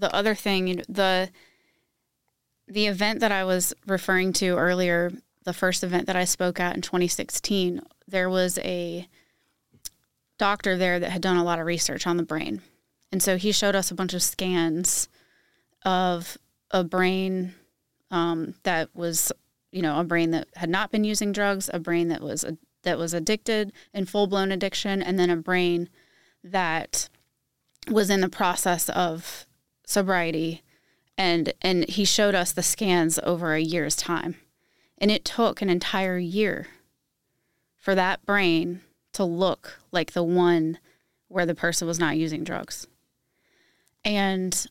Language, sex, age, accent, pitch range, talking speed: English, female, 20-39, American, 170-195 Hz, 160 wpm